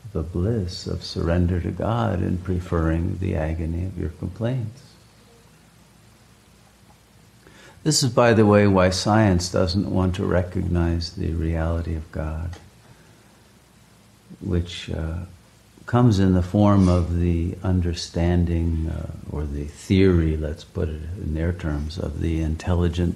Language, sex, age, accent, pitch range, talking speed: English, male, 60-79, American, 85-105 Hz, 130 wpm